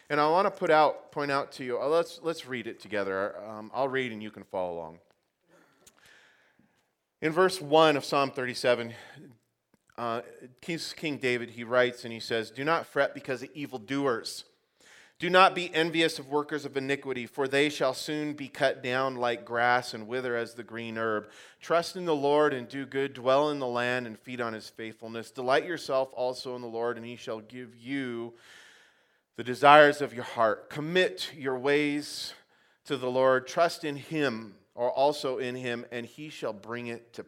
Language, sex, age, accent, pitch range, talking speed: English, male, 30-49, American, 115-145 Hz, 190 wpm